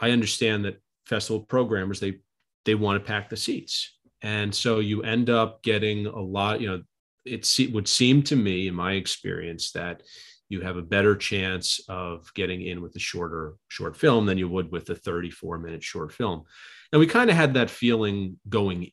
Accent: American